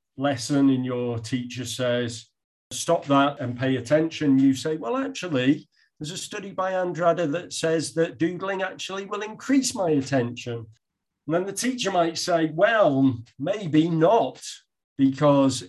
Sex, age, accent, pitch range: male, 40-59, British, 120-155 Hz